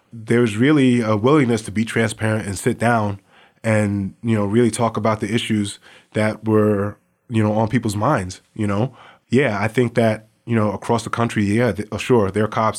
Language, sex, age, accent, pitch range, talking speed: English, male, 20-39, American, 100-115 Hz, 190 wpm